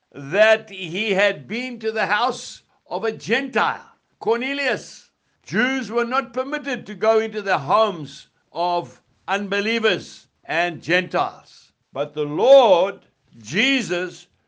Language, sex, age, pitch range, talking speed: English, male, 60-79, 180-240 Hz, 115 wpm